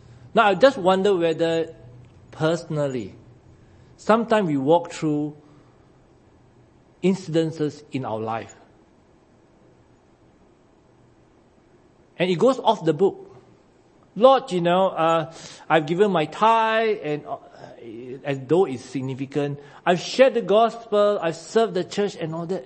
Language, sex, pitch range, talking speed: English, male, 125-175 Hz, 120 wpm